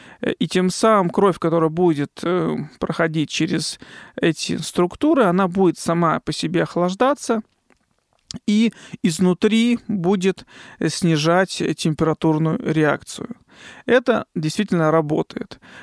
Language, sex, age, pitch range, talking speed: Russian, male, 40-59, 160-195 Hz, 95 wpm